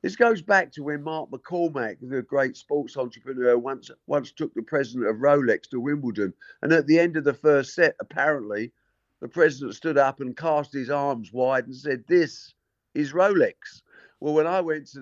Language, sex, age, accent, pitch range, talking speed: English, male, 50-69, British, 110-150 Hz, 190 wpm